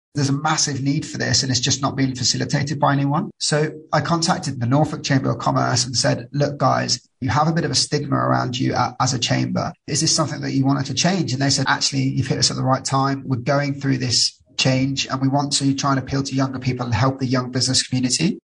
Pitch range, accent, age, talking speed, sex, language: 125-140 Hz, British, 20-39, 250 wpm, male, English